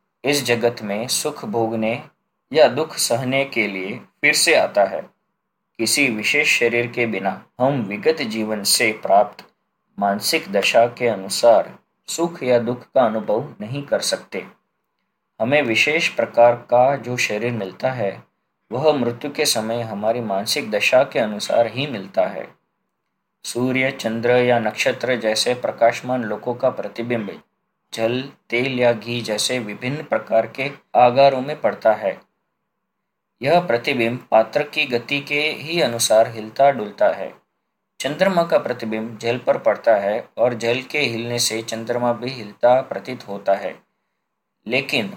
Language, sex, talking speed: Hindi, male, 140 wpm